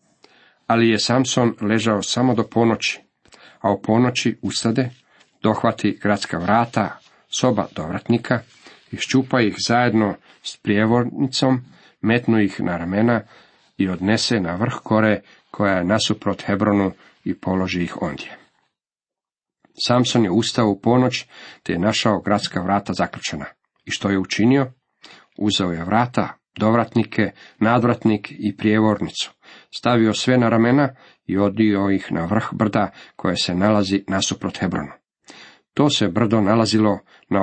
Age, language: 40-59, Croatian